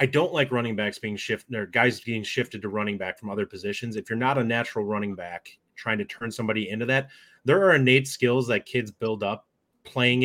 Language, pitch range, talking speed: English, 110-130 Hz, 230 wpm